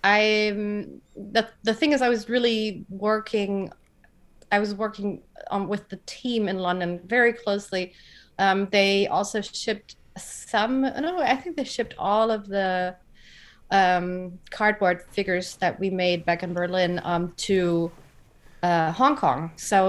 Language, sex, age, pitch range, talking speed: English, female, 30-49, 185-220 Hz, 145 wpm